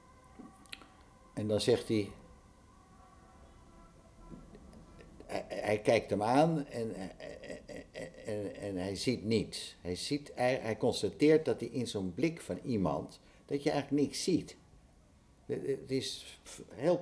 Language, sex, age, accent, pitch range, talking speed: Dutch, male, 60-79, Dutch, 80-105 Hz, 115 wpm